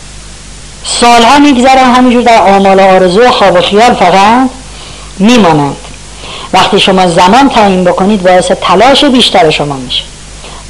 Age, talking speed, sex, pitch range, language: 50-69, 120 wpm, female, 170-240 Hz, Persian